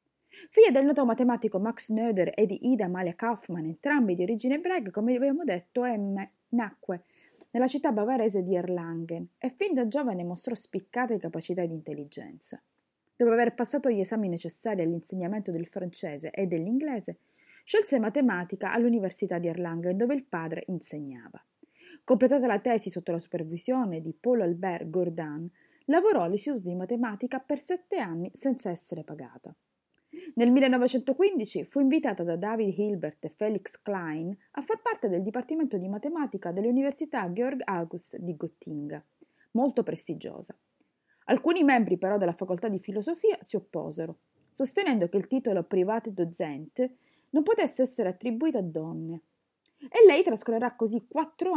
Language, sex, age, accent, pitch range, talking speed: Italian, female, 30-49, native, 180-265 Hz, 145 wpm